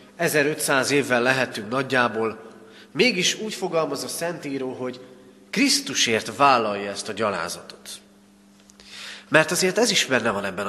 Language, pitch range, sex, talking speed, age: Hungarian, 100-150 Hz, male, 125 wpm, 30-49